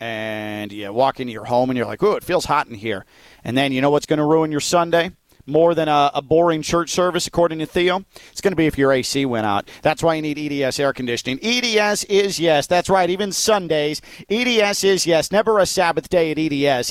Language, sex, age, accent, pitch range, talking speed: English, male, 40-59, American, 155-185 Hz, 240 wpm